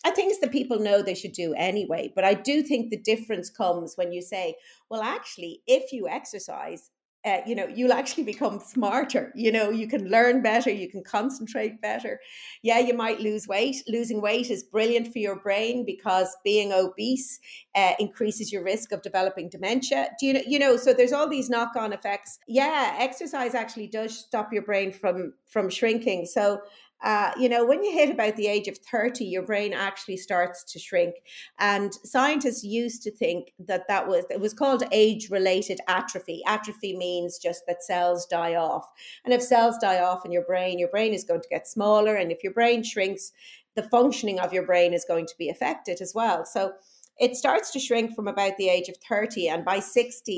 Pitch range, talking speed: 185-235 Hz, 200 wpm